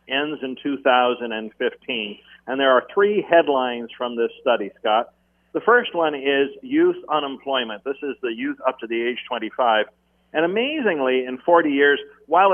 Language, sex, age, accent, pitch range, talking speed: English, male, 50-69, American, 120-150 Hz, 160 wpm